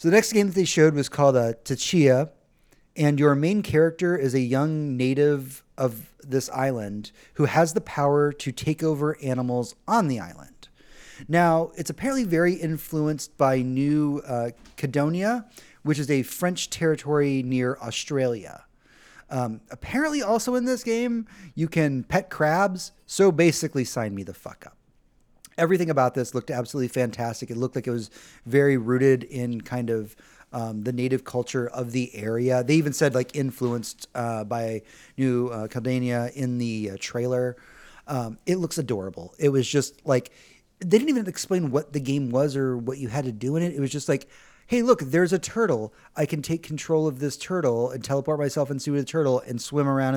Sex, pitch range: male, 125-160 Hz